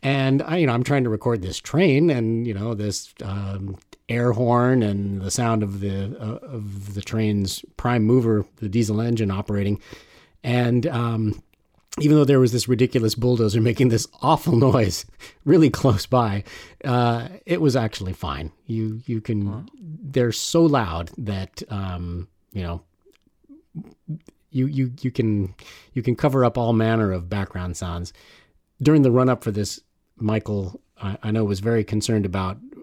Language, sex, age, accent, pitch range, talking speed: English, male, 40-59, American, 100-130 Hz, 165 wpm